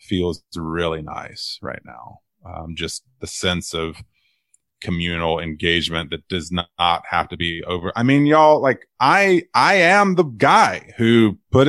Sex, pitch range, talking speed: male, 85-110 Hz, 155 wpm